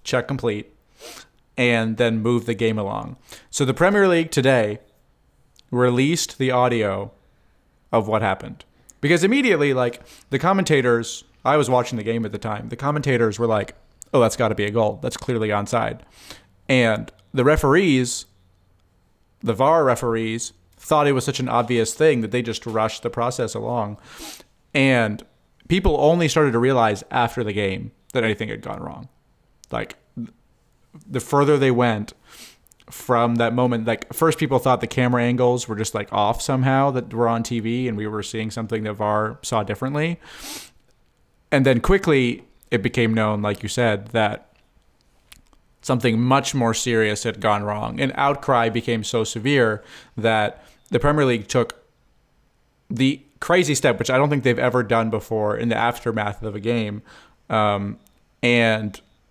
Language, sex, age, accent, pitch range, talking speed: English, male, 30-49, American, 110-130 Hz, 160 wpm